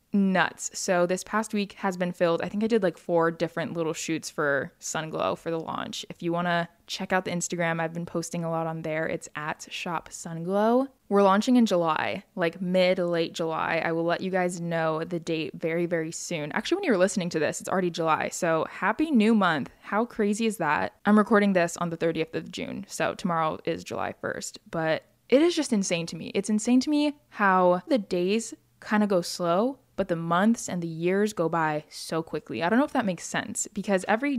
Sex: female